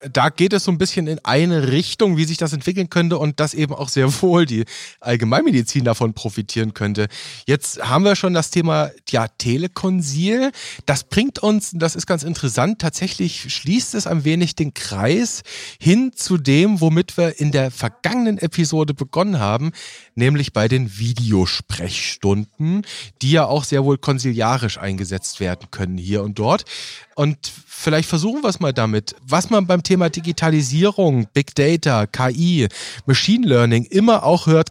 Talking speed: 165 wpm